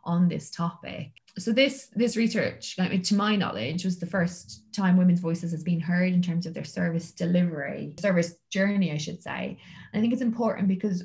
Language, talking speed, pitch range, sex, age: English, 195 wpm, 165-185 Hz, female, 20-39